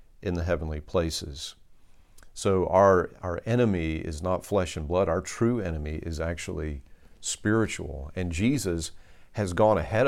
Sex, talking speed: male, 145 wpm